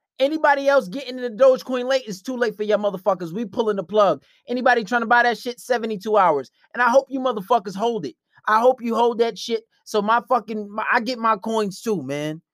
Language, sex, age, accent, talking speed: English, male, 20-39, American, 230 wpm